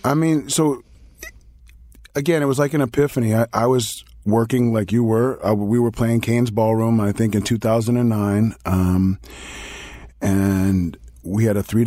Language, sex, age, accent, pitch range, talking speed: English, male, 30-49, American, 100-120 Hz, 160 wpm